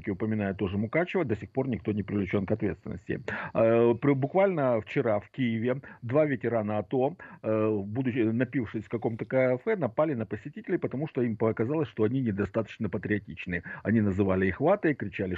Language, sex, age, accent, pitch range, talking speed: Russian, male, 50-69, native, 105-145 Hz, 150 wpm